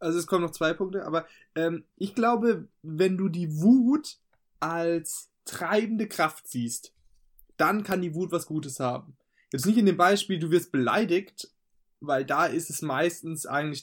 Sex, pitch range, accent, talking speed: male, 145-195 Hz, German, 170 wpm